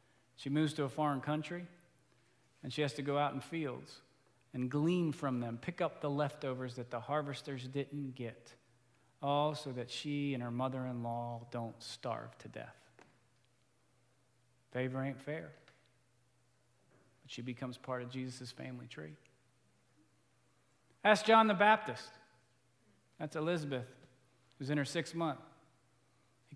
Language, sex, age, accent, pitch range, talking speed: English, male, 40-59, American, 125-145 Hz, 140 wpm